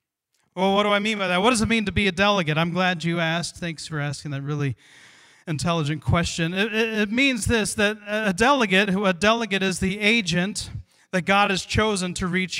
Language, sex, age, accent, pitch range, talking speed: English, male, 40-59, American, 165-220 Hz, 210 wpm